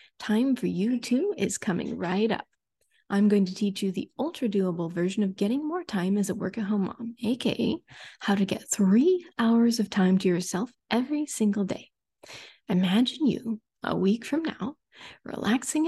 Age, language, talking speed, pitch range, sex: 20-39, English, 165 wpm, 200-275 Hz, female